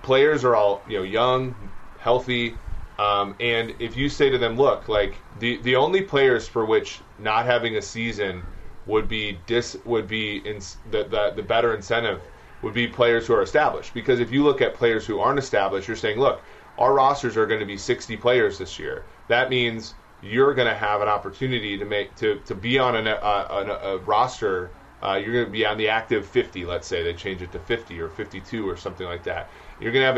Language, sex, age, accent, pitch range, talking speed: English, male, 30-49, American, 100-125 Hz, 220 wpm